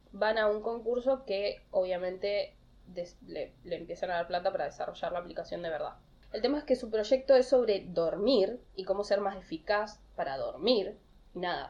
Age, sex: 10-29, female